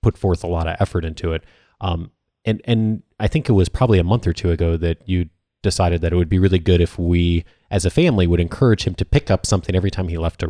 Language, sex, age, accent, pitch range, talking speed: English, male, 30-49, American, 90-115 Hz, 270 wpm